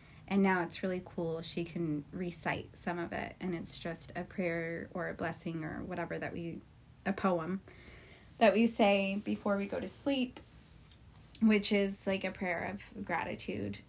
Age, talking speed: 20-39, 175 wpm